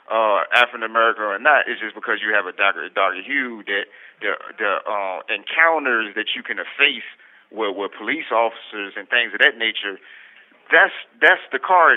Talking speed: 180 wpm